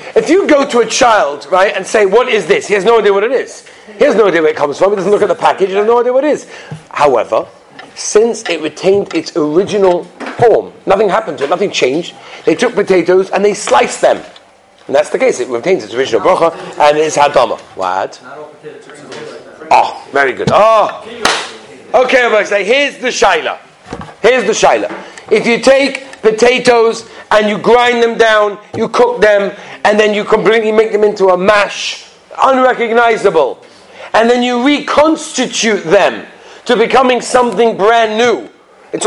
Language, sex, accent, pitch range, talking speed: English, male, British, 190-275 Hz, 185 wpm